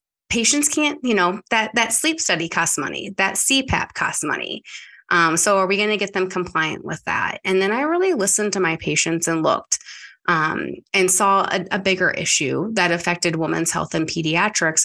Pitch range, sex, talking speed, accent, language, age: 170-210 Hz, female, 195 wpm, American, English, 20-39